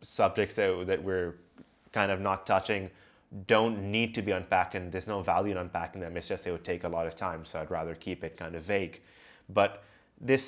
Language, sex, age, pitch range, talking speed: English, male, 20-39, 95-120 Hz, 230 wpm